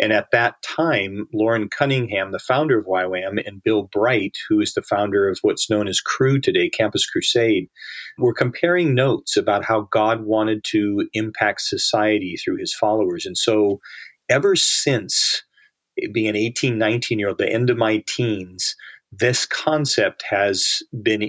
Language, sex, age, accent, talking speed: English, male, 40-59, American, 160 wpm